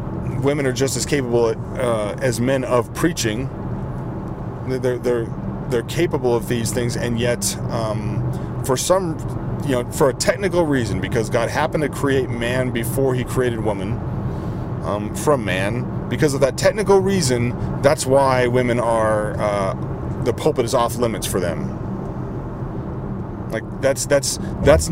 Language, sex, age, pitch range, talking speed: English, male, 30-49, 115-130 Hz, 150 wpm